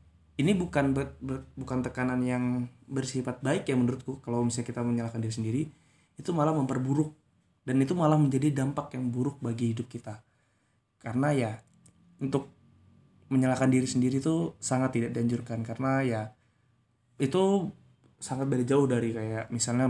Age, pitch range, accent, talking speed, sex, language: 20-39, 120-140 Hz, native, 140 wpm, male, Indonesian